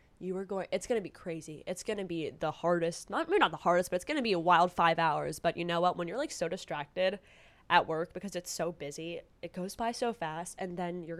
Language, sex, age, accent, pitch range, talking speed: English, female, 10-29, American, 165-200 Hz, 275 wpm